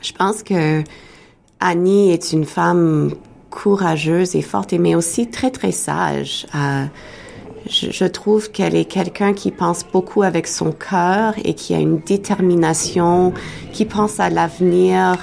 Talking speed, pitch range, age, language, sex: 145 wpm, 155-185 Hz, 30-49, French, female